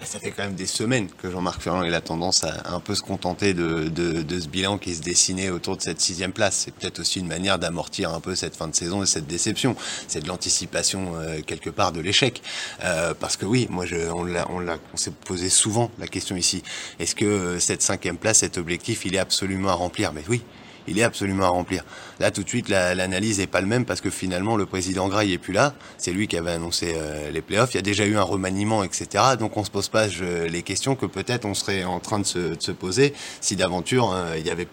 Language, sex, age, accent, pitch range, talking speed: French, male, 20-39, French, 90-110 Hz, 255 wpm